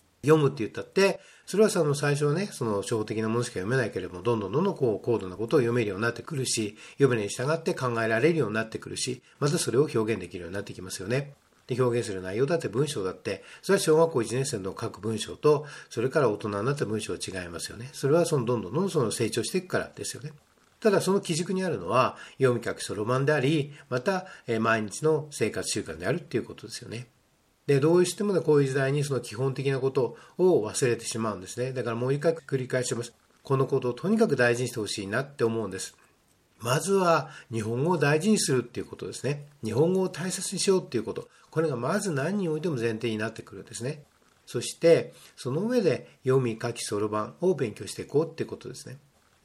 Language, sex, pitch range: Japanese, male, 115-155 Hz